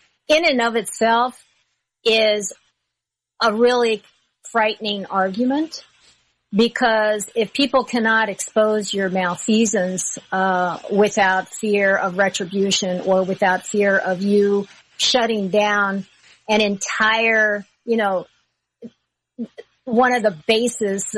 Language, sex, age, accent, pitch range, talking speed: English, female, 50-69, American, 195-240 Hz, 100 wpm